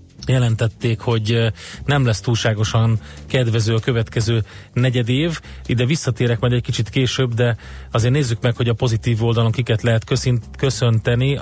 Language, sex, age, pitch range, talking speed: Hungarian, male, 30-49, 110-130 Hz, 140 wpm